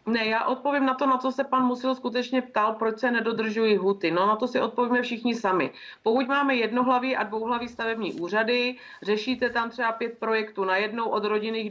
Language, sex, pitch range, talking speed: Czech, female, 200-235 Hz, 200 wpm